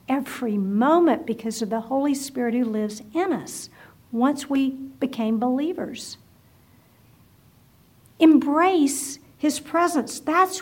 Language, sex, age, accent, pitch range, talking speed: English, female, 50-69, American, 225-285 Hz, 105 wpm